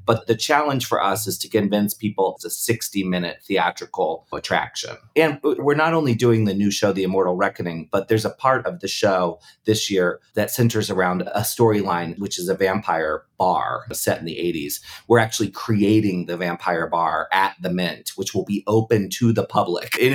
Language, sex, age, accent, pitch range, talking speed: English, male, 30-49, American, 100-120 Hz, 195 wpm